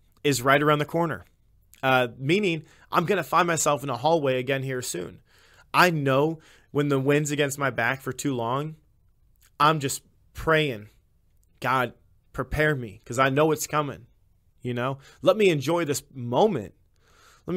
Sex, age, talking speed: male, 20-39, 160 wpm